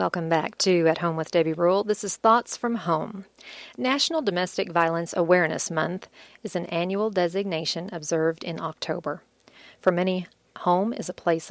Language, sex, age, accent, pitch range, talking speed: English, female, 40-59, American, 165-200 Hz, 160 wpm